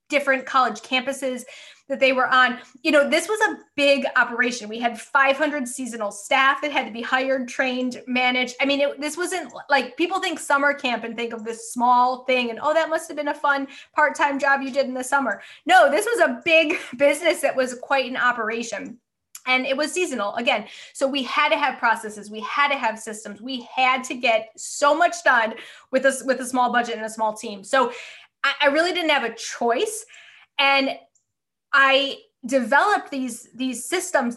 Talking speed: 200 wpm